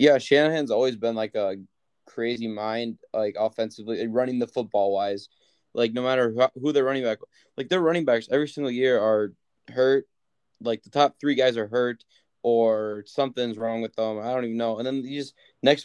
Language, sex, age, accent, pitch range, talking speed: English, male, 20-39, American, 115-130 Hz, 190 wpm